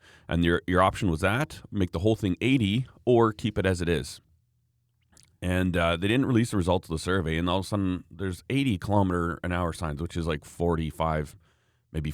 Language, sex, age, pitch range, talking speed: English, male, 30-49, 85-110 Hz, 215 wpm